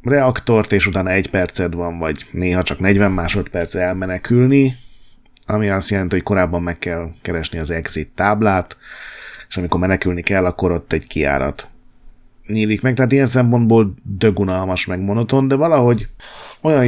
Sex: male